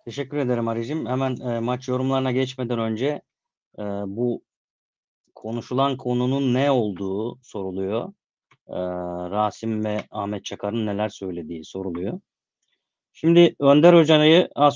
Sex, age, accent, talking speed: male, 30-49, native, 115 wpm